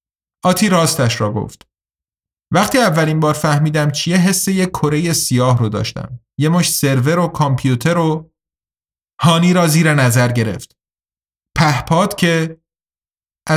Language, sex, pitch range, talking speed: Persian, male, 125-170 Hz, 125 wpm